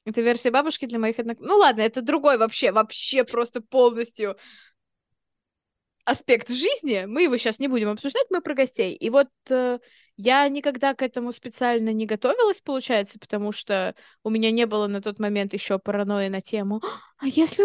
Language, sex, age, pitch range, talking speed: Russian, female, 20-39, 220-285 Hz, 175 wpm